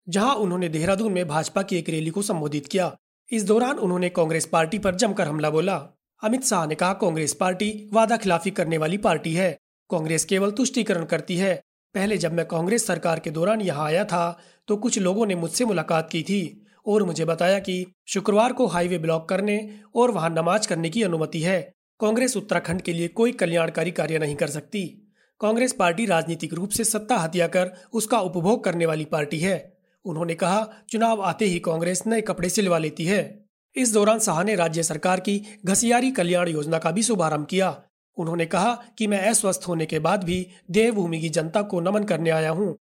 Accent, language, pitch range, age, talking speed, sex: native, Hindi, 165-210 Hz, 30-49, 190 wpm, male